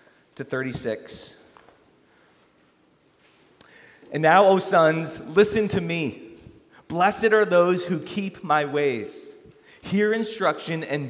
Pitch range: 140-180 Hz